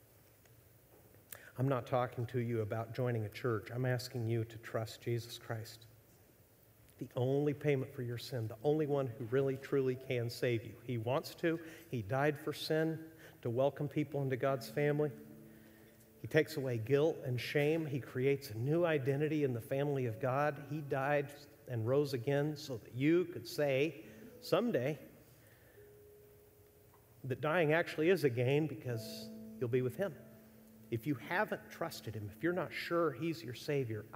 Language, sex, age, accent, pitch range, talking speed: English, male, 50-69, American, 110-140 Hz, 165 wpm